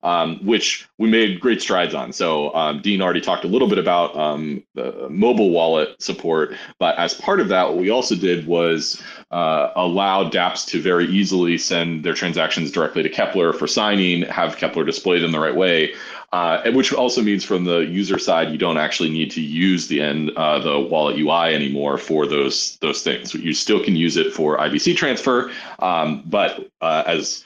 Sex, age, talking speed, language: male, 30-49, 195 wpm, English